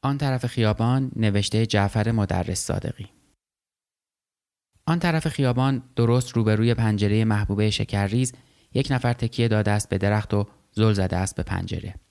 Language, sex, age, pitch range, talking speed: Persian, male, 20-39, 100-115 Hz, 135 wpm